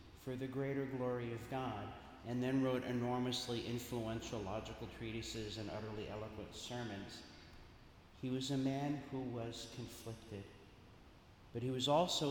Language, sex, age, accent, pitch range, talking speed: English, male, 50-69, American, 110-135 Hz, 135 wpm